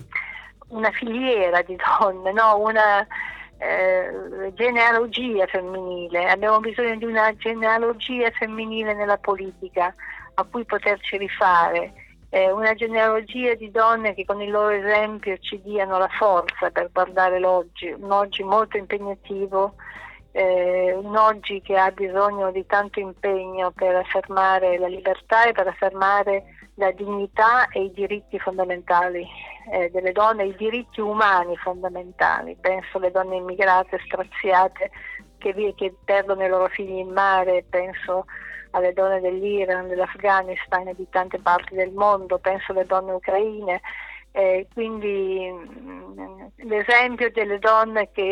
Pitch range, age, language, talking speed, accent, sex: 185-210 Hz, 50-69, Italian, 130 wpm, native, female